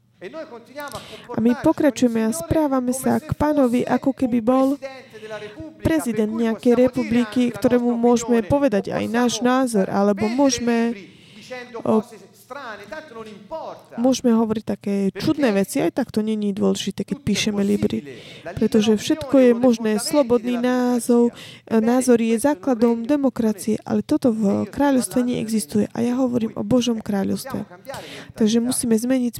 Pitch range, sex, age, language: 215-255 Hz, female, 20-39, Slovak